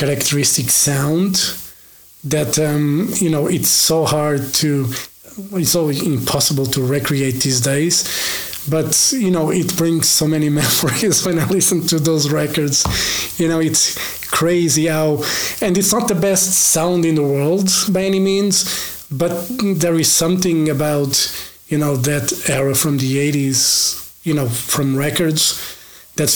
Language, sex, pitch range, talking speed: Portuguese, male, 145-170 Hz, 150 wpm